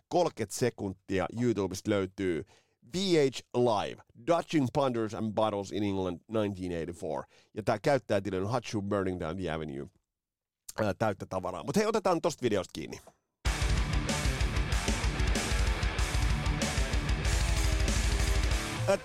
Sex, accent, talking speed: male, native, 100 wpm